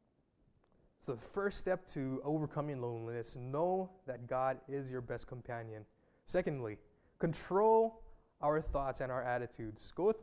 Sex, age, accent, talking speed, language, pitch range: male, 20-39, American, 135 wpm, English, 125-170 Hz